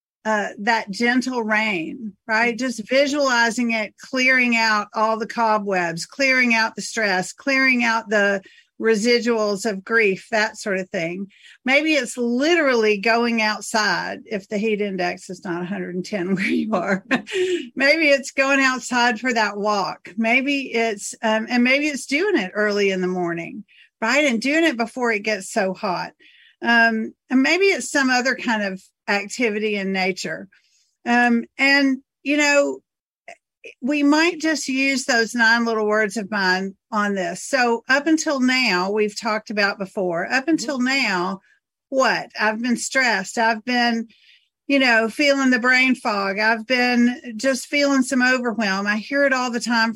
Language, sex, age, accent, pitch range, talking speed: English, female, 50-69, American, 205-260 Hz, 155 wpm